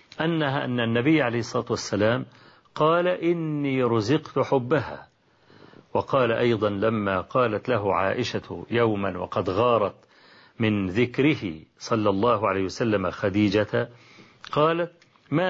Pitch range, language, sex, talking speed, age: 115-155 Hz, English, male, 105 wpm, 40-59